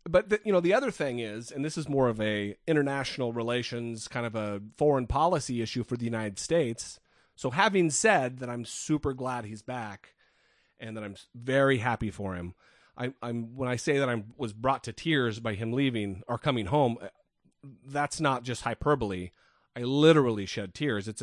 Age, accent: 30-49, American